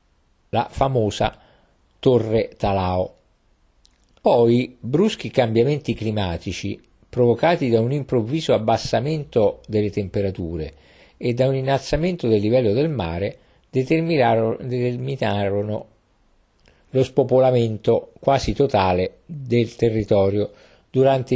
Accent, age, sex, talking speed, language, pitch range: native, 50-69, male, 85 wpm, Italian, 100-130 Hz